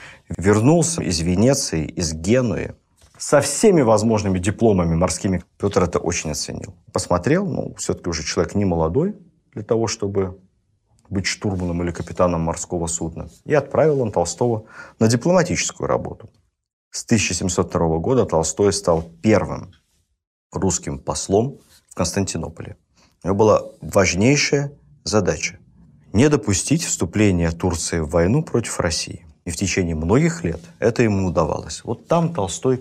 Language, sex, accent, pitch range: Russian, male, native, 85-120 Hz